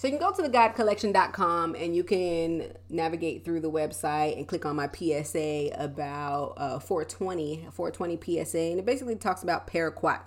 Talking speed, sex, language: 170 wpm, female, English